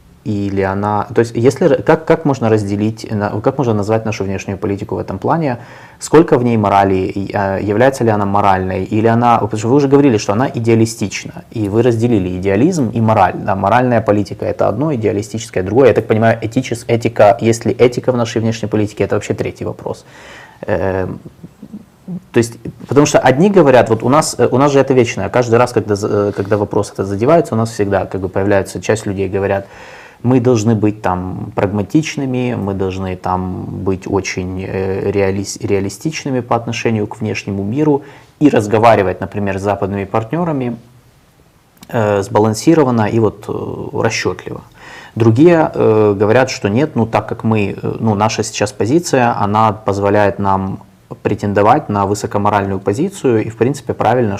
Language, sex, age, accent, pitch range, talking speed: Russian, male, 20-39, native, 100-120 Hz, 160 wpm